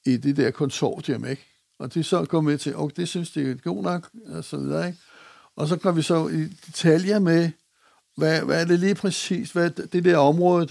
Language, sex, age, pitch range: Danish, male, 60-79, 140-170 Hz